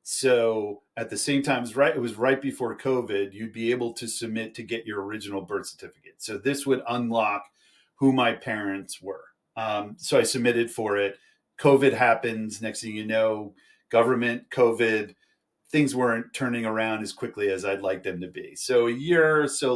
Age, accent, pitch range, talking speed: 40-59, American, 105-130 Hz, 185 wpm